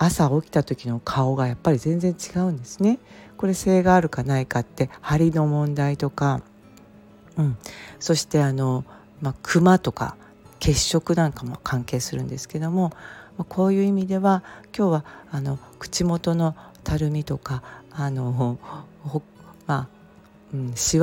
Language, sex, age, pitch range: Japanese, female, 40-59, 130-170 Hz